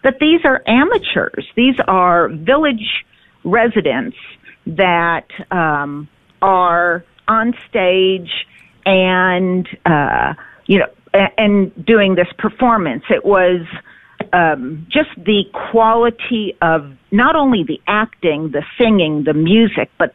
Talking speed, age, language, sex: 115 wpm, 50-69, English, female